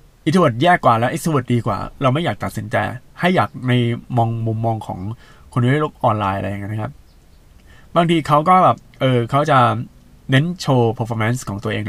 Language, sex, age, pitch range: Thai, male, 20-39, 110-145 Hz